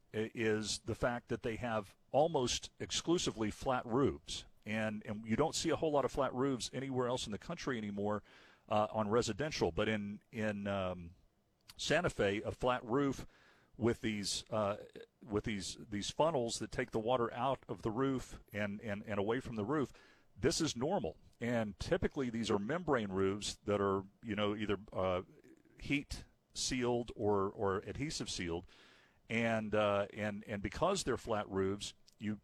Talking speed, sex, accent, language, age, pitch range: 170 wpm, male, American, English, 50-69, 105-125 Hz